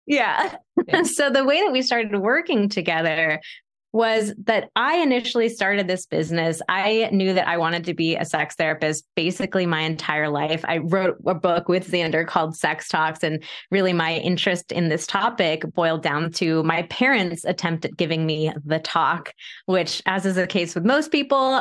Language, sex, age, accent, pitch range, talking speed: English, female, 20-39, American, 170-225 Hz, 180 wpm